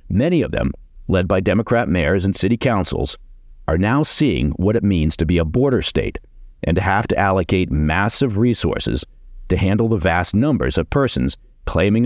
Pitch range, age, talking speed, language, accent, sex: 80-115 Hz, 50-69, 180 wpm, English, American, male